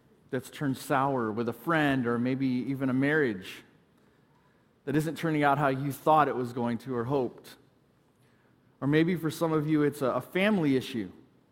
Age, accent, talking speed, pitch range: 30-49, American, 175 wpm, 130-155 Hz